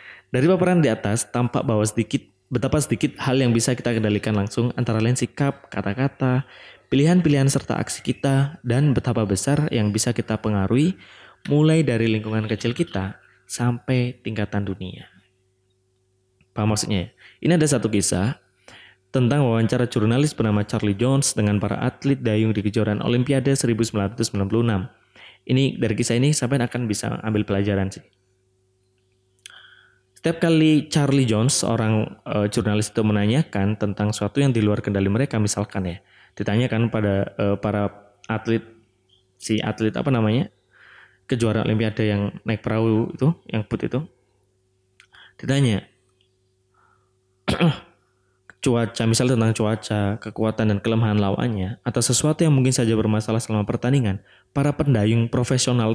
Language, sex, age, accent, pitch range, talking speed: Indonesian, male, 20-39, native, 100-130 Hz, 135 wpm